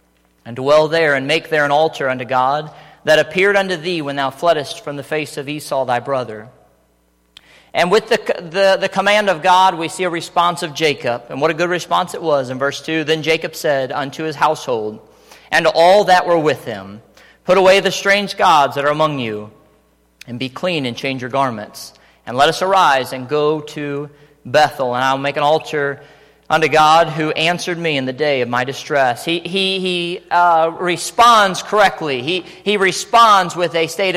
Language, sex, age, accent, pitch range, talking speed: English, male, 40-59, American, 135-170 Hz, 195 wpm